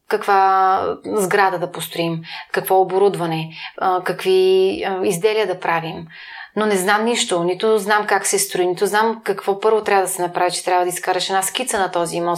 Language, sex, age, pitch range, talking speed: Bulgarian, female, 30-49, 190-235 Hz, 175 wpm